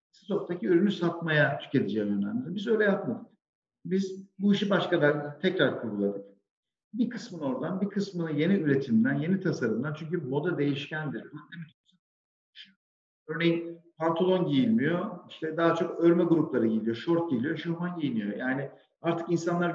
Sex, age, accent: male, 50-69, native